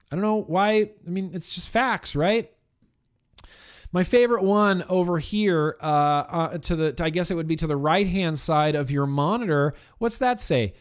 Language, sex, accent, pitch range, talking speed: English, male, American, 145-205 Hz, 195 wpm